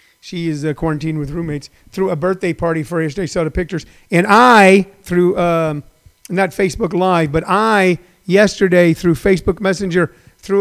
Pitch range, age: 160-185 Hz, 40-59